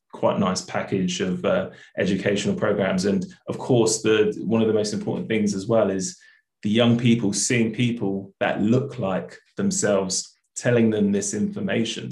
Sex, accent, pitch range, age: male, British, 105-120 Hz, 20-39